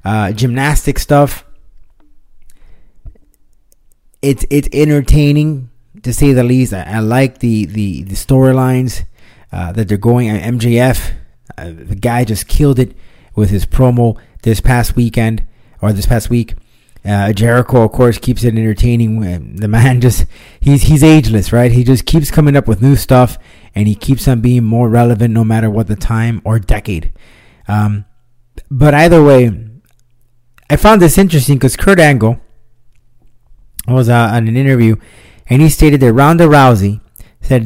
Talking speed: 155 wpm